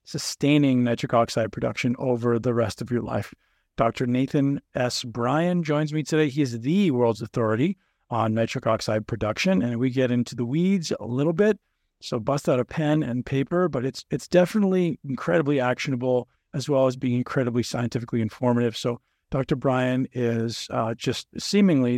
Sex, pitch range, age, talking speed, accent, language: male, 120-150 Hz, 40-59, 170 wpm, American, English